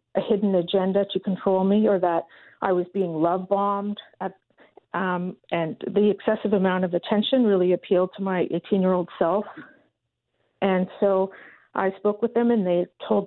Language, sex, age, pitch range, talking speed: English, female, 50-69, 185-220 Hz, 165 wpm